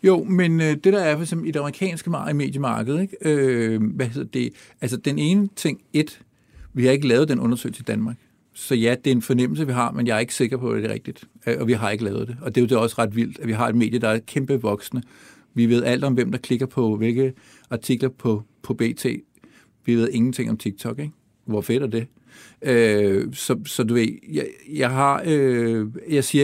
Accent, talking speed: native, 225 wpm